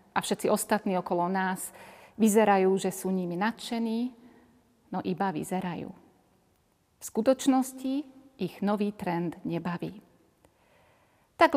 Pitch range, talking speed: 185-235 Hz, 105 wpm